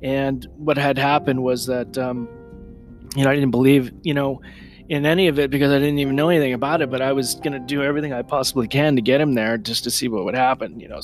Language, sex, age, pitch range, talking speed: English, male, 30-49, 120-135 Hz, 260 wpm